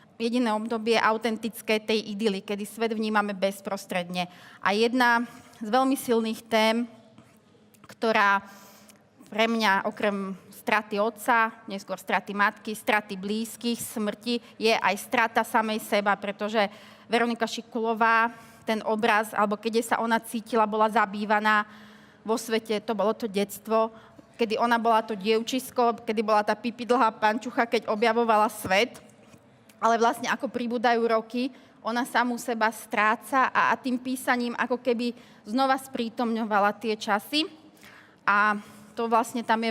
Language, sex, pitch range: Slovak, female, 210-235 Hz